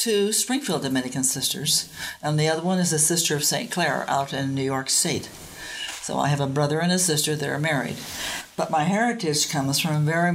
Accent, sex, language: American, female, English